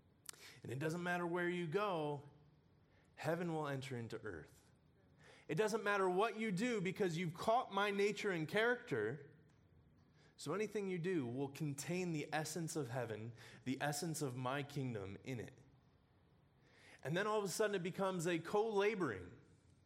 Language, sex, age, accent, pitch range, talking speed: English, male, 20-39, American, 135-195 Hz, 155 wpm